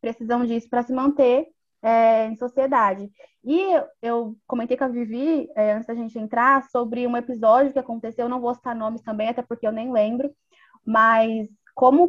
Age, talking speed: 20-39, 175 wpm